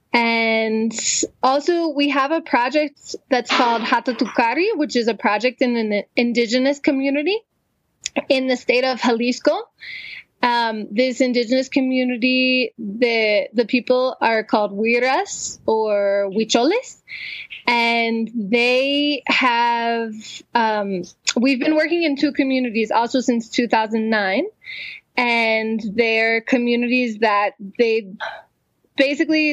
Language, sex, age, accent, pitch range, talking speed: English, female, 20-39, American, 225-260 Hz, 110 wpm